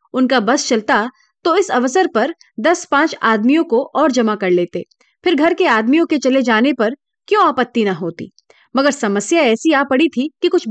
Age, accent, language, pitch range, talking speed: 30-49, native, Hindi, 215-330 Hz, 195 wpm